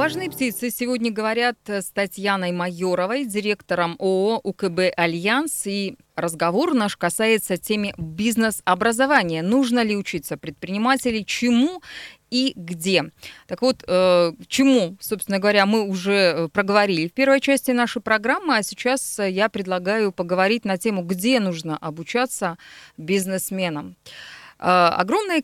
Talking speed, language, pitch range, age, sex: 115 wpm, Russian, 185-230 Hz, 20-39, female